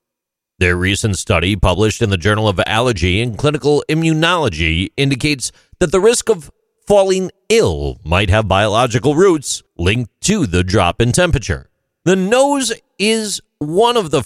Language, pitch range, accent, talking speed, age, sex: English, 95-150 Hz, American, 145 wpm, 40-59, male